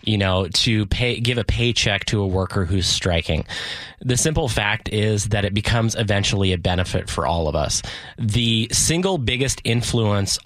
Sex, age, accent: male, 20-39, American